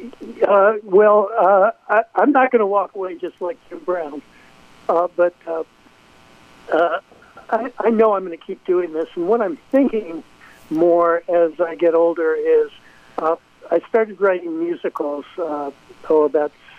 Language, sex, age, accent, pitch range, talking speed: English, male, 60-79, American, 150-175 Hz, 155 wpm